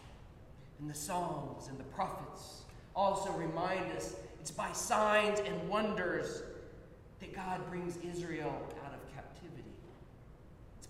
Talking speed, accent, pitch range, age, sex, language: 120 wpm, American, 145-215 Hz, 40-59, male, English